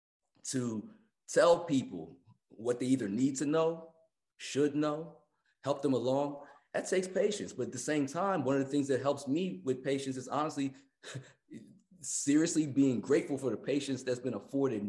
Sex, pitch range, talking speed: male, 105-145 Hz, 170 wpm